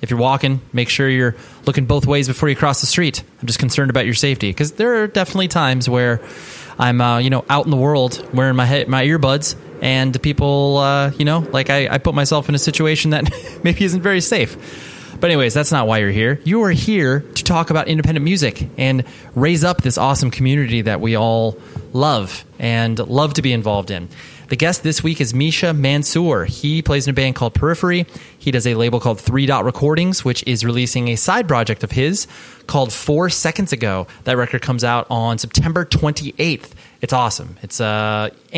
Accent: American